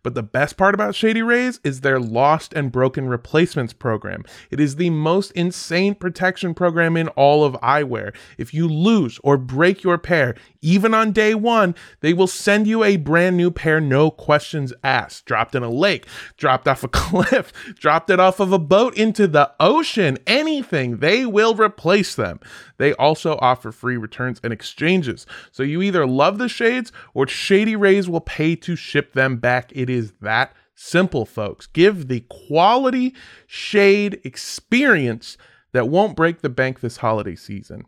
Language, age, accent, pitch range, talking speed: English, 20-39, American, 140-205 Hz, 170 wpm